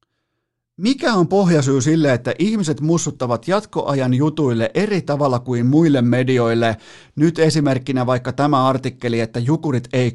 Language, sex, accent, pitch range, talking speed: Finnish, male, native, 120-140 Hz, 130 wpm